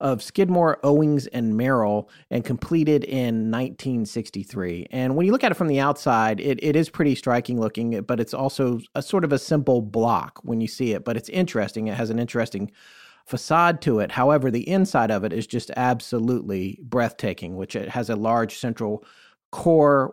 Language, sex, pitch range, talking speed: English, male, 110-140 Hz, 190 wpm